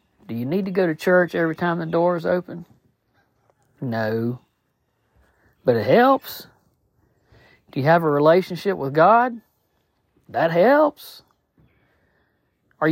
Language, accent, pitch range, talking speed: English, American, 155-215 Hz, 125 wpm